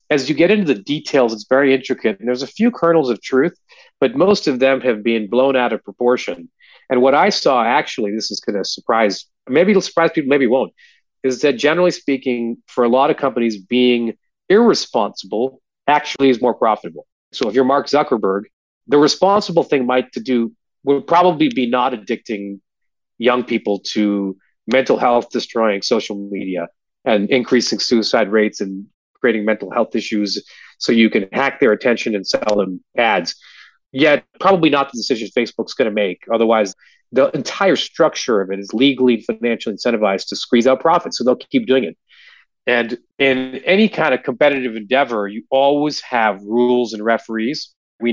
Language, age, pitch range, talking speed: English, 40-59, 110-140 Hz, 180 wpm